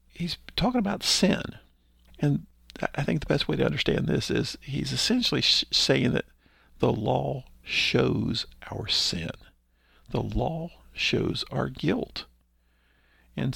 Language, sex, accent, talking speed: English, male, American, 130 wpm